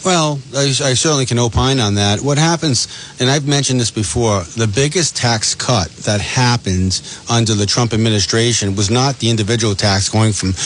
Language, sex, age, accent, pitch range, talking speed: English, male, 40-59, American, 105-130 Hz, 180 wpm